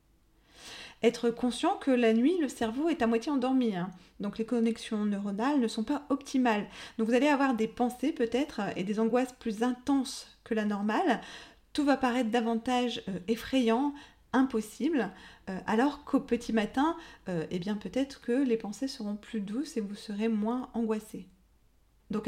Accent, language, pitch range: French, French, 205-255 Hz